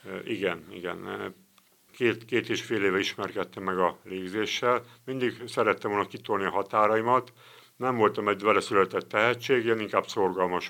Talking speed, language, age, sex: 145 wpm, Hungarian, 60-79, male